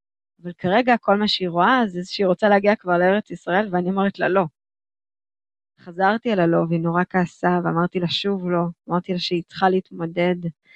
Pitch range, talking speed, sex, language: 170-205 Hz, 180 wpm, female, Hebrew